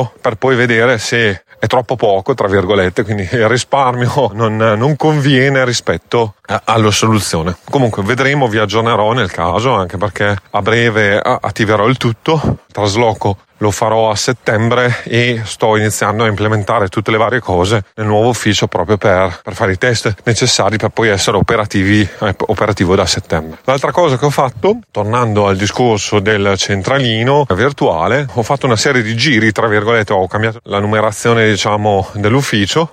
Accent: native